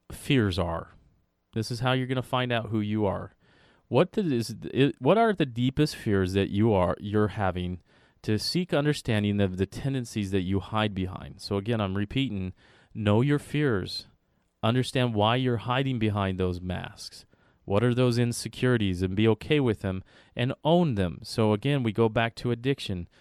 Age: 30-49